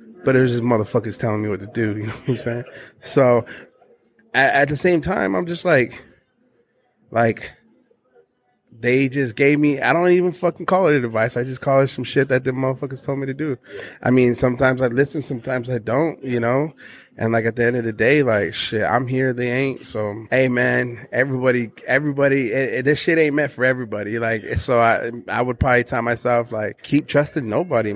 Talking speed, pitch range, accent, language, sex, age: 210 wpm, 115-140 Hz, American, English, male, 20-39